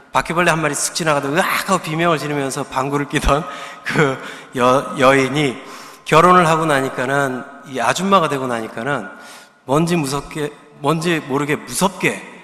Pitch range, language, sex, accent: 130-170 Hz, Korean, male, native